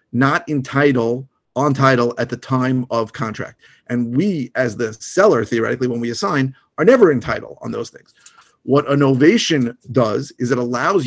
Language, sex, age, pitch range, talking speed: English, male, 40-59, 120-135 Hz, 165 wpm